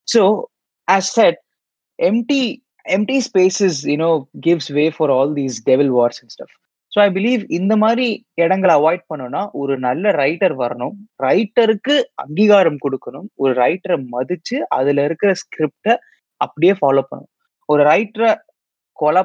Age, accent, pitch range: 20-39, native, 140-205 Hz